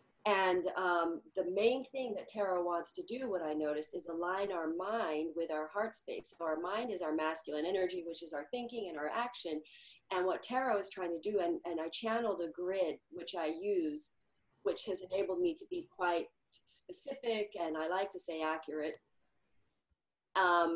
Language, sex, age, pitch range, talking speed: English, female, 40-59, 175-225 Hz, 190 wpm